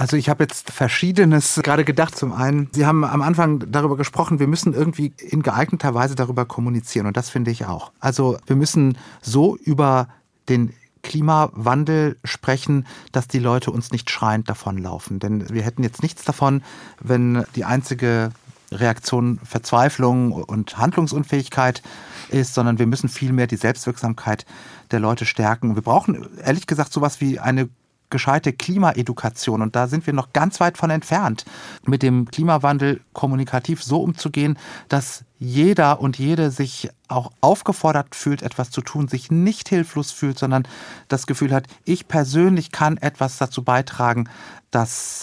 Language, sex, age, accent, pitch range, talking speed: German, male, 40-59, German, 120-150 Hz, 155 wpm